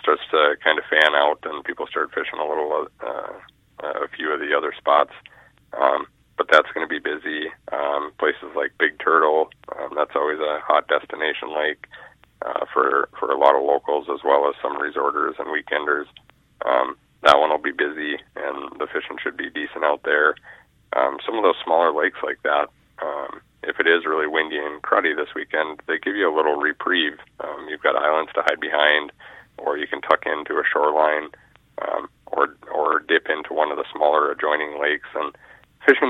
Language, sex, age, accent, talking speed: English, male, 30-49, American, 195 wpm